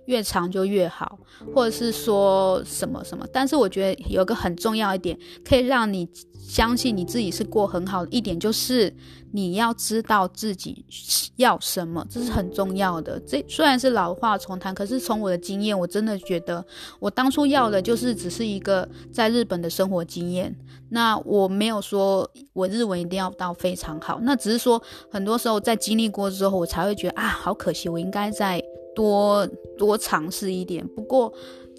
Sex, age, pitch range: female, 20-39, 180-230 Hz